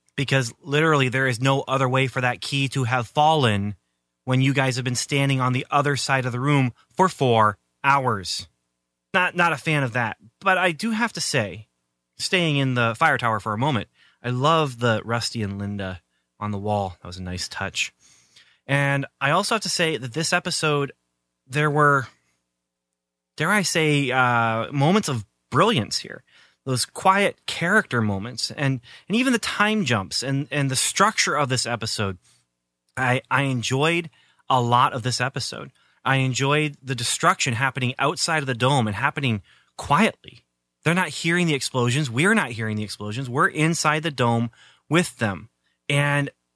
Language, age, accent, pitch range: English, 30-49, American, 110-150 Hz